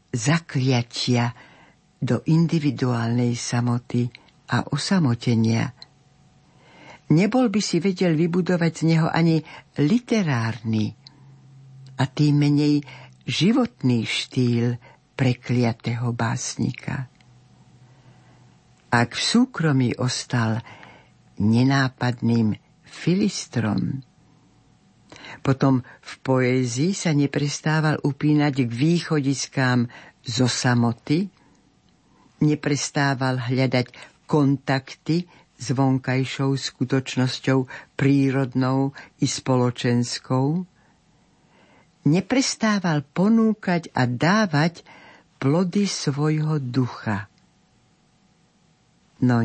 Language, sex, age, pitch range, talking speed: Slovak, female, 60-79, 125-155 Hz, 65 wpm